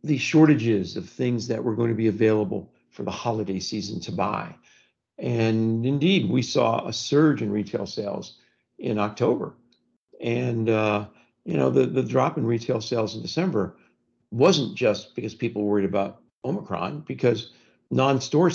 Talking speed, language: 155 wpm, English